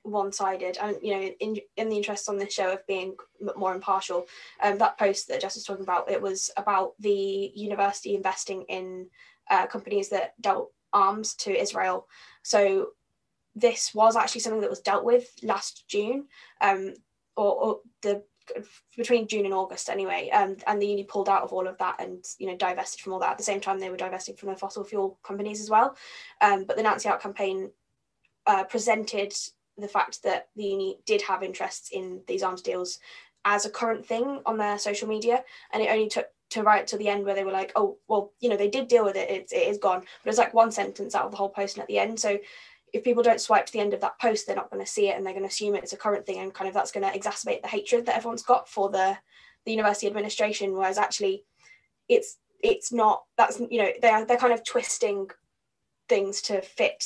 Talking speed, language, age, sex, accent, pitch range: 230 wpm, English, 10-29, female, British, 195-230 Hz